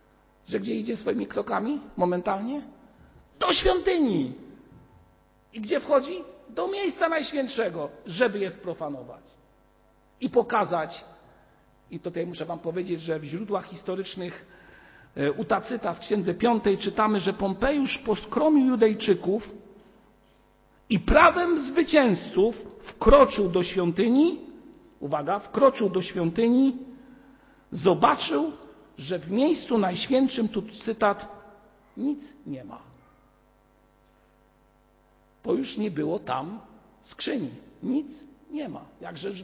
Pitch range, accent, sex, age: 200-275 Hz, native, male, 50-69